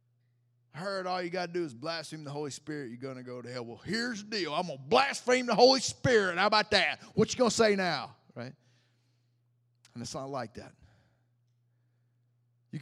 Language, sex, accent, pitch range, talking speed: English, male, American, 125-190 Hz, 190 wpm